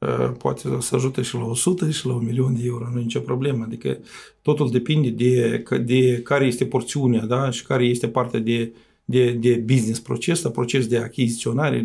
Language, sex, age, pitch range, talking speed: Romanian, male, 50-69, 115-130 Hz, 185 wpm